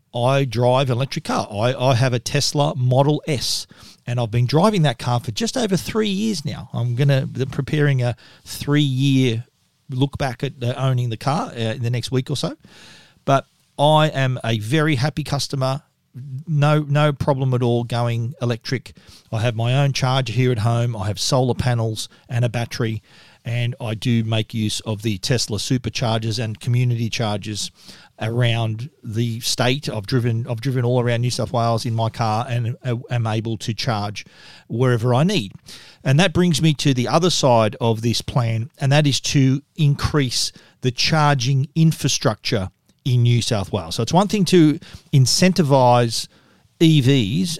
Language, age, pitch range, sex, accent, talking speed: English, 40-59, 115-145 Hz, male, Australian, 175 wpm